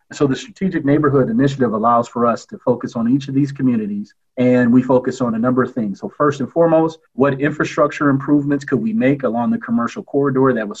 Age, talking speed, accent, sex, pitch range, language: 30-49, 215 wpm, American, male, 125-165 Hz, English